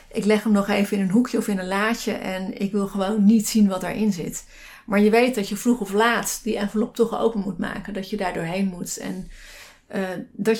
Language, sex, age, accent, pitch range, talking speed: Dutch, female, 30-49, Dutch, 195-225 Hz, 245 wpm